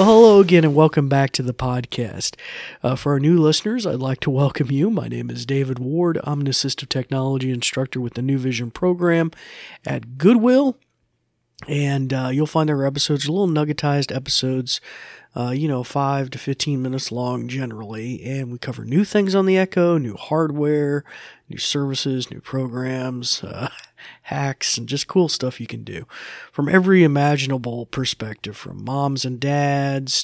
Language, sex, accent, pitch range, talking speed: English, male, American, 125-150 Hz, 170 wpm